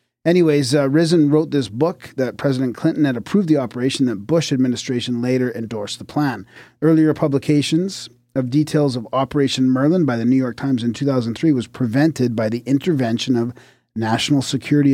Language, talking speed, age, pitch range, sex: English, 170 wpm, 40-59, 120-155 Hz, male